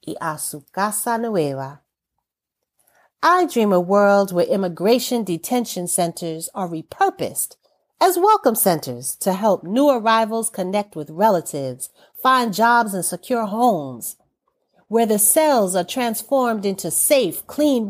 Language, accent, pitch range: English, American, 165-225 Hz